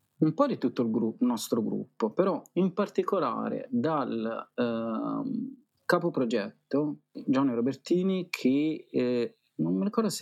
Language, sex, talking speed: Italian, male, 135 wpm